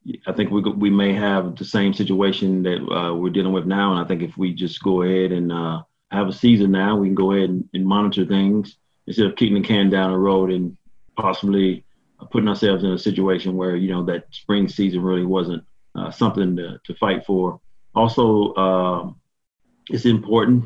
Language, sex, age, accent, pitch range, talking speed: English, male, 30-49, American, 95-105 Hz, 205 wpm